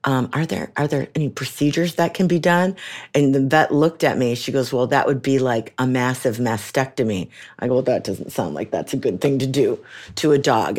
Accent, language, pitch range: American, English, 130-155 Hz